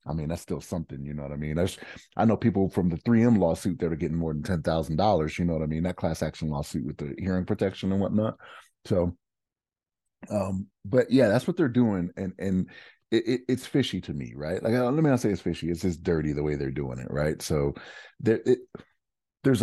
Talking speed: 230 wpm